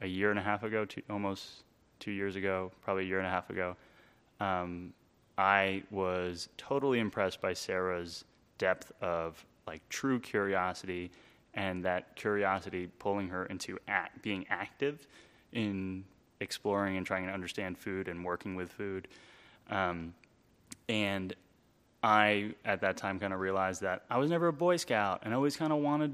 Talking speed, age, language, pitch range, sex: 165 wpm, 20-39, English, 90-115 Hz, male